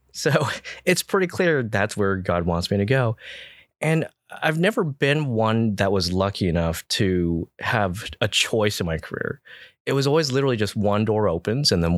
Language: English